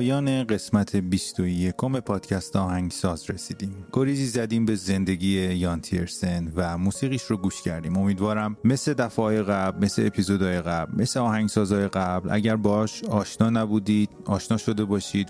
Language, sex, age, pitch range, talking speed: English, male, 30-49, 95-115 Hz, 135 wpm